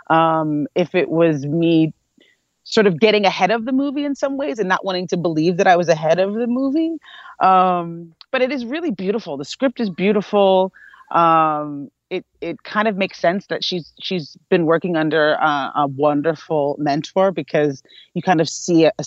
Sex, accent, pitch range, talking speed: female, American, 160-220 Hz, 190 wpm